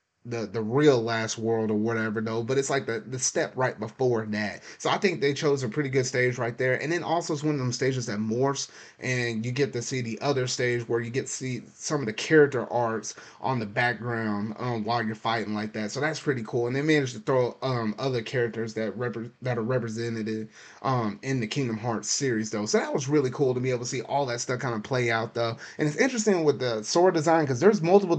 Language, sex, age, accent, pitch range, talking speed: English, male, 30-49, American, 115-140 Hz, 250 wpm